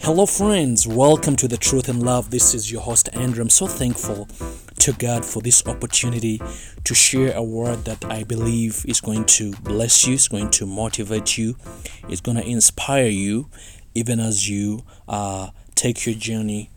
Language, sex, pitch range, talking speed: English, male, 100-120 Hz, 180 wpm